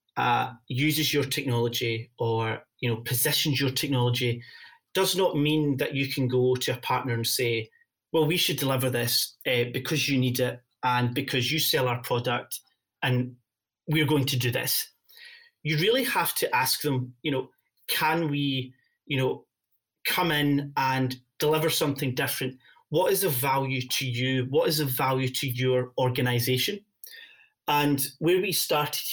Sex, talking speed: male, 165 wpm